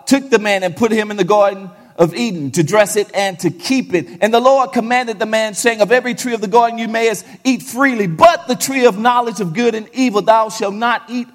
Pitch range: 140-215 Hz